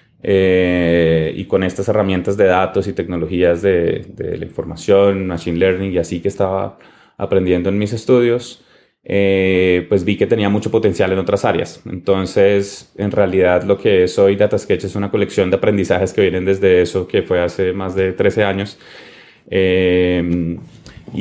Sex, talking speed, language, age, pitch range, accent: male, 165 wpm, Spanish, 20-39, 95-105 Hz, Colombian